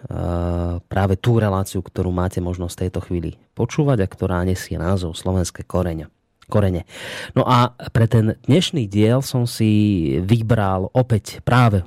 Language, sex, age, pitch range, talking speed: Slovak, male, 30-49, 95-120 Hz, 130 wpm